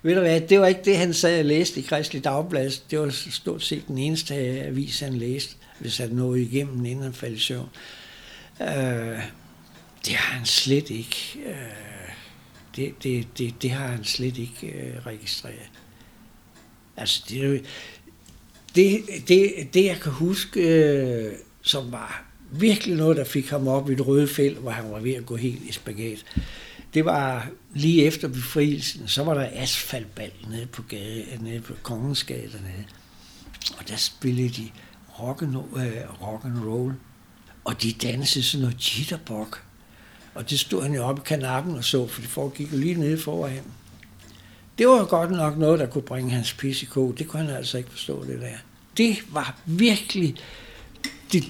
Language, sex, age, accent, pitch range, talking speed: Danish, male, 60-79, native, 120-155 Hz, 150 wpm